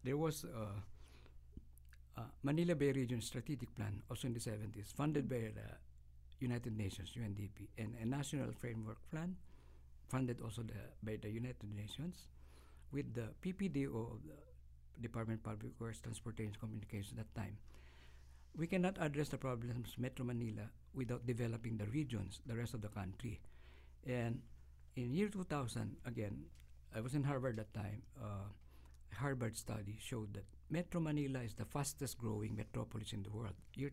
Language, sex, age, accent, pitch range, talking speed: English, male, 50-69, Filipino, 100-130 Hz, 155 wpm